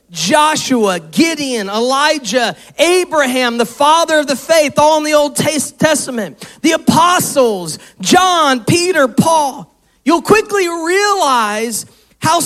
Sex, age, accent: male, 40-59, American